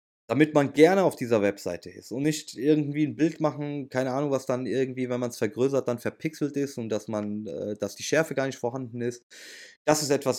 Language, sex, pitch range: German, male, 110-145 Hz